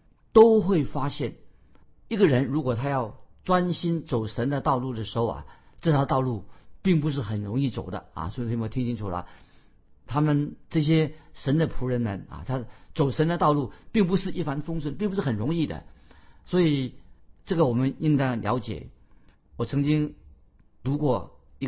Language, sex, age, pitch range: Chinese, male, 50-69, 115-155 Hz